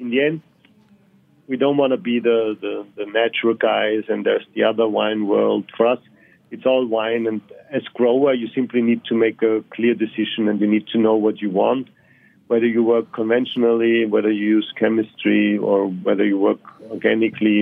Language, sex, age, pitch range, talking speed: English, male, 40-59, 110-125 Hz, 190 wpm